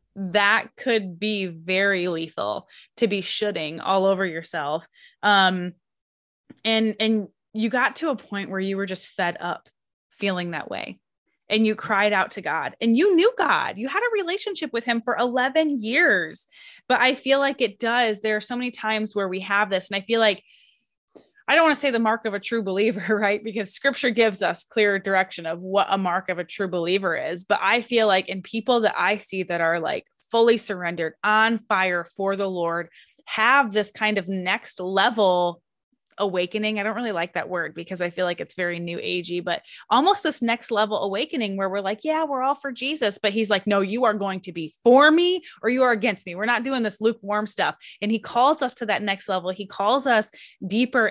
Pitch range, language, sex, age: 190-230 Hz, English, female, 20-39